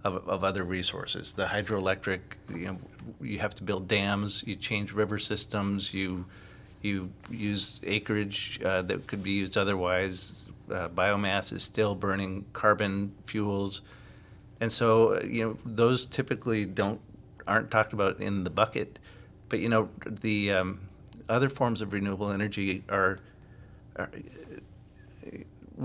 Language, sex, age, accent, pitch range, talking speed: English, male, 50-69, American, 100-115 Hz, 135 wpm